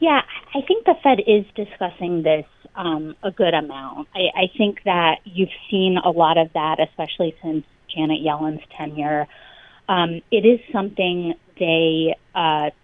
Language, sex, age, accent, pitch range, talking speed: English, female, 30-49, American, 155-185 Hz, 155 wpm